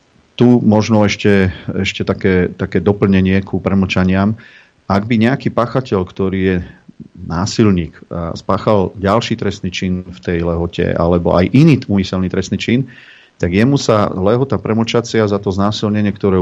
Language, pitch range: Slovak, 90-110 Hz